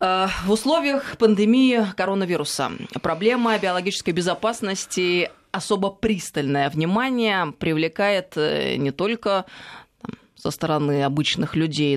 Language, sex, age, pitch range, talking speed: Russian, female, 20-39, 150-195 Hz, 85 wpm